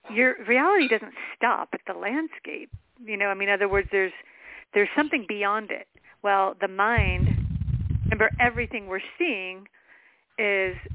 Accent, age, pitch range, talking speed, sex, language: American, 40-59, 180-230 Hz, 150 wpm, female, English